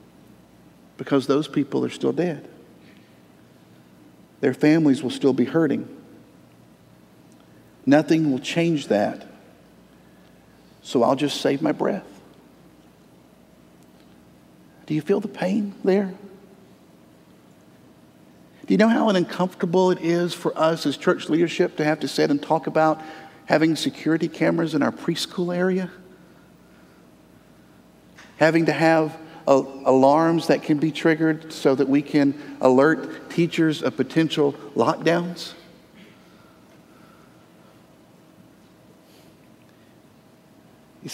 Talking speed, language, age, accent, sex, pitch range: 105 wpm, English, 50-69, American, male, 140-170 Hz